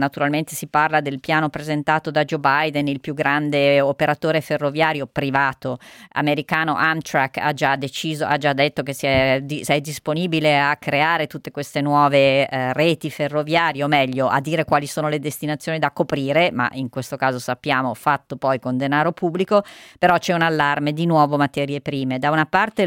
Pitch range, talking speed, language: 140-155 Hz, 180 wpm, Italian